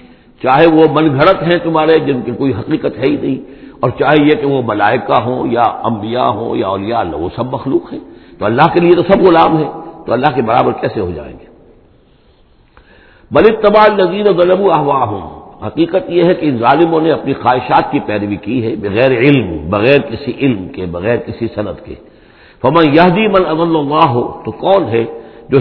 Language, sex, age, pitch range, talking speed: English, male, 60-79, 115-175 Hz, 155 wpm